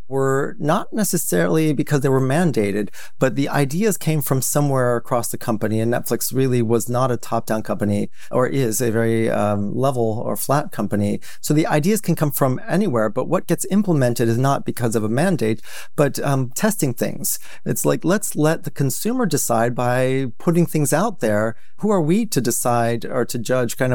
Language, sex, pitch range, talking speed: English, male, 115-150 Hz, 190 wpm